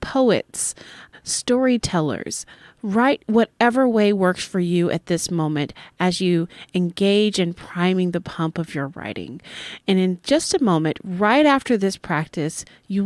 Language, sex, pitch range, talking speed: English, female, 165-225 Hz, 145 wpm